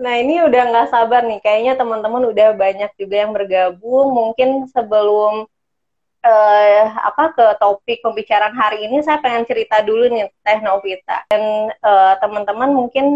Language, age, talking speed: Indonesian, 20-39, 150 wpm